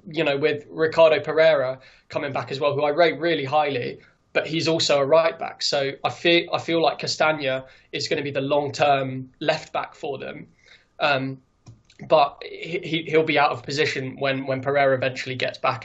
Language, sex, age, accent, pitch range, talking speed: English, male, 20-39, British, 135-150 Hz, 195 wpm